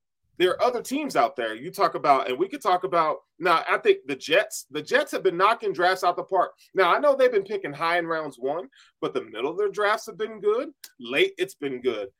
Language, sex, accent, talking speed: English, male, American, 250 wpm